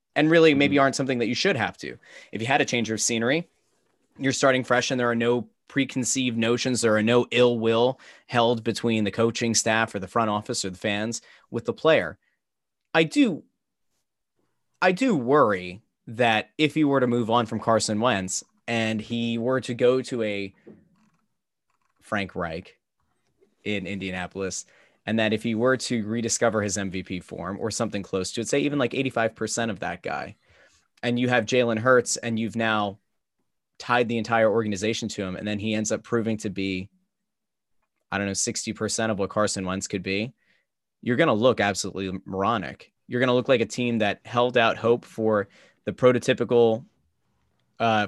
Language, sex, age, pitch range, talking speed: English, male, 20-39, 105-120 Hz, 185 wpm